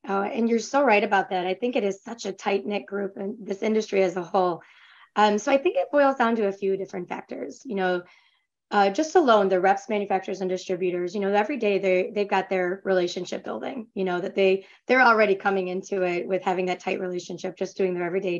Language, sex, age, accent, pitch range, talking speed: English, female, 20-39, American, 185-220 Hz, 240 wpm